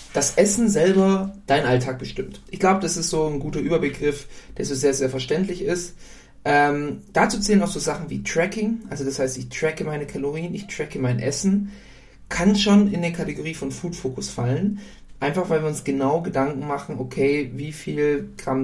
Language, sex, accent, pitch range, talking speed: German, male, German, 130-165 Hz, 190 wpm